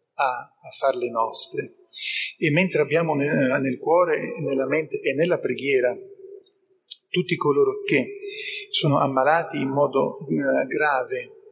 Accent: native